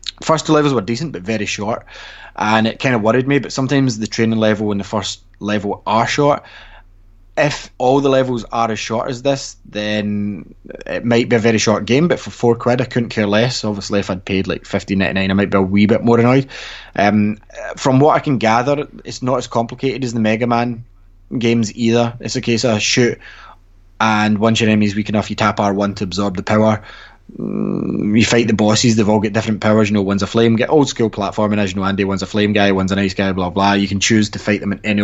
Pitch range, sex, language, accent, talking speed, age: 100-120 Hz, male, English, British, 240 wpm, 20-39